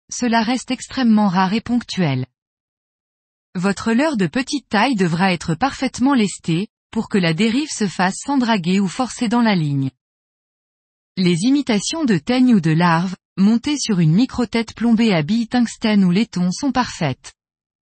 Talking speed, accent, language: 160 wpm, French, French